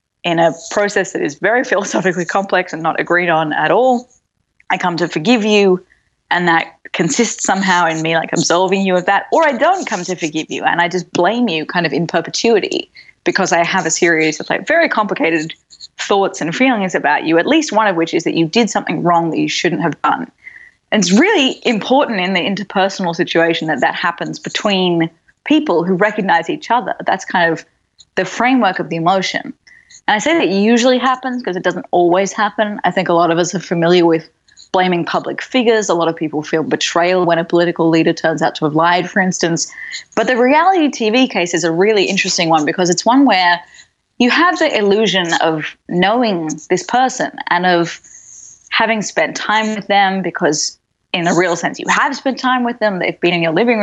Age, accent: 20-39, Australian